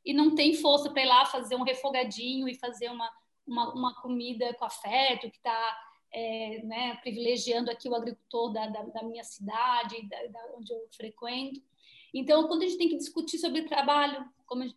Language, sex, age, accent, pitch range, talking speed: Portuguese, female, 20-39, Brazilian, 240-290 Hz, 175 wpm